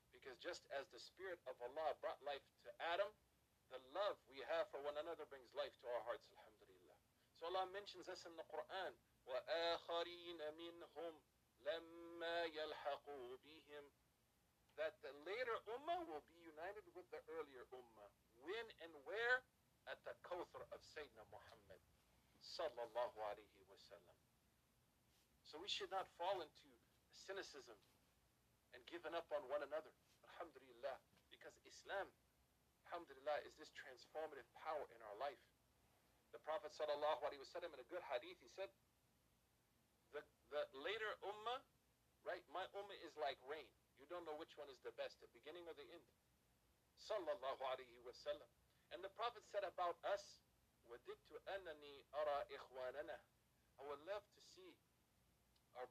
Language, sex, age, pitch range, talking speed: English, male, 50-69, 140-195 Hz, 135 wpm